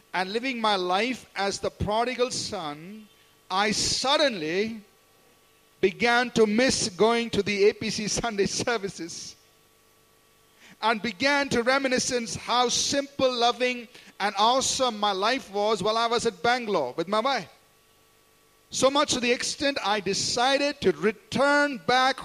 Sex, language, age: male, English, 50-69